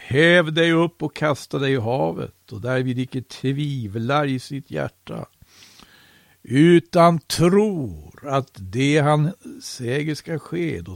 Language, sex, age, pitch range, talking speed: Swedish, male, 60-79, 130-160 Hz, 130 wpm